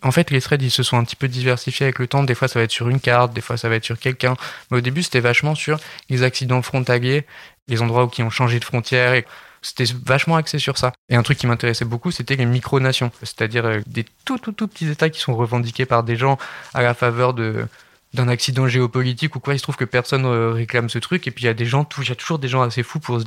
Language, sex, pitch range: French, male, 115-135 Hz